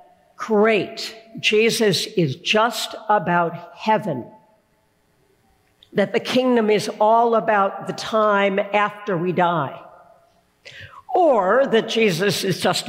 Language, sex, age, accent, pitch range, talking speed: English, female, 60-79, American, 170-225 Hz, 100 wpm